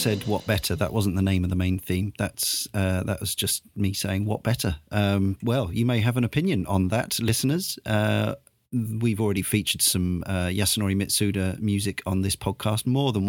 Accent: British